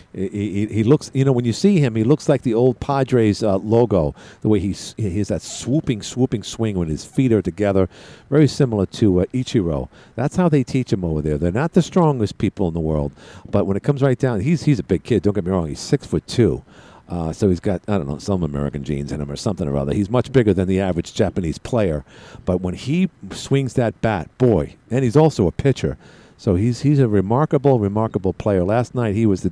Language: English